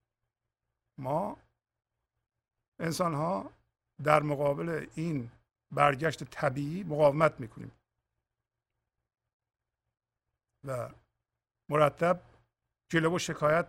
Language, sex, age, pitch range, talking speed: English, male, 50-69, 130-155 Hz, 55 wpm